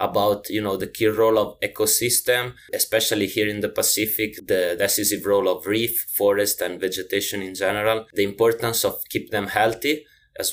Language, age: English, 20-39